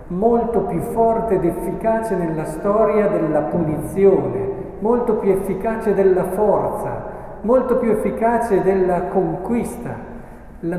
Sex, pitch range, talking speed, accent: male, 145-185 Hz, 110 wpm, native